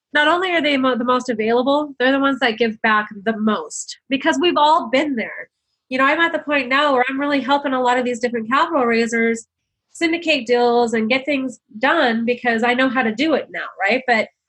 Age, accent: 30-49, American